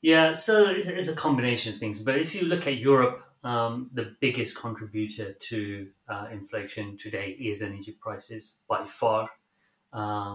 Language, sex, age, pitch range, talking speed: English, male, 30-49, 110-130 Hz, 155 wpm